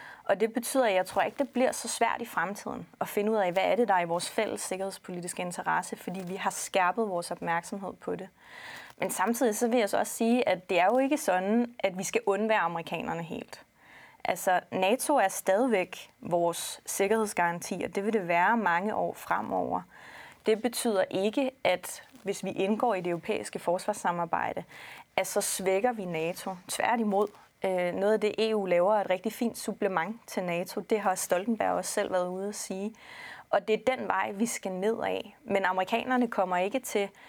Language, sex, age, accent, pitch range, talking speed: Danish, female, 30-49, native, 185-225 Hz, 195 wpm